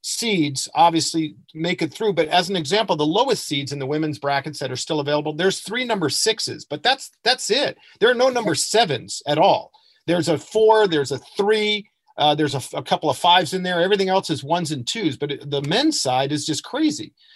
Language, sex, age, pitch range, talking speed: English, male, 40-59, 145-195 Hz, 220 wpm